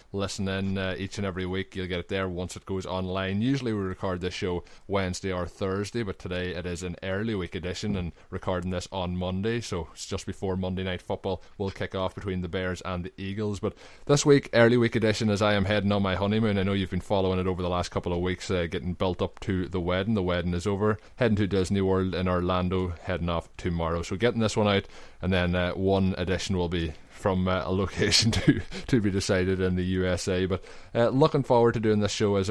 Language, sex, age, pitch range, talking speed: English, male, 20-39, 90-100 Hz, 240 wpm